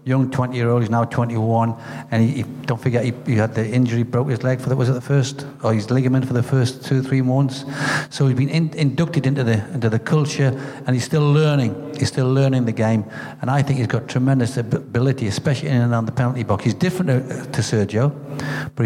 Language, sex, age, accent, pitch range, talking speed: English, male, 50-69, British, 115-135 Hz, 230 wpm